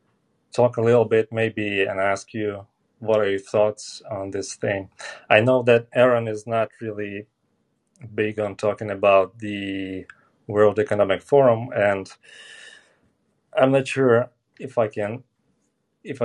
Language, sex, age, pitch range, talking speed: English, male, 30-49, 100-115 Hz, 140 wpm